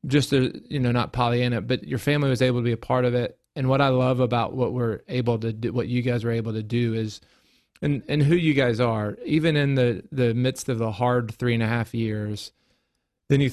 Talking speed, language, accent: 250 wpm, English, American